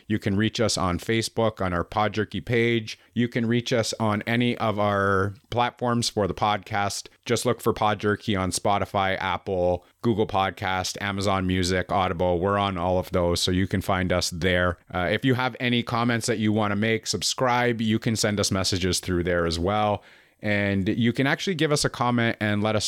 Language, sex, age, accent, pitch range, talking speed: English, male, 30-49, American, 95-110 Hz, 205 wpm